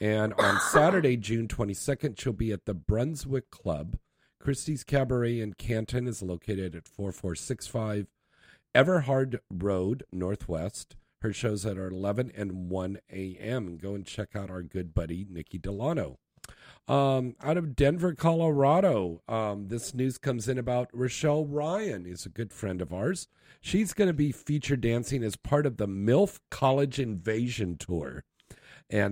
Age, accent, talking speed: 40-59, American, 150 wpm